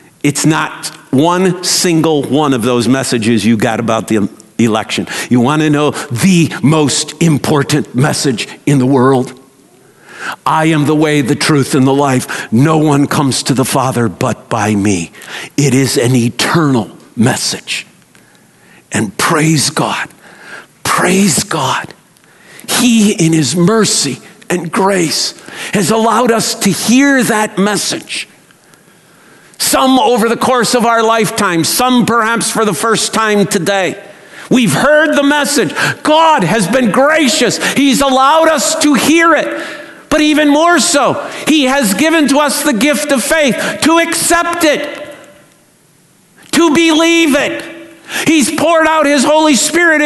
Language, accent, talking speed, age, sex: English, American, 140 wpm, 50-69, male